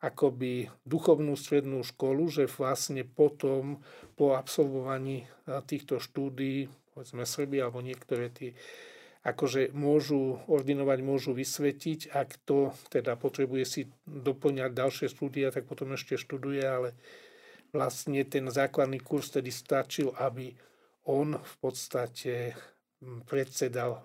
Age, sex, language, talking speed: 40-59, male, Slovak, 110 wpm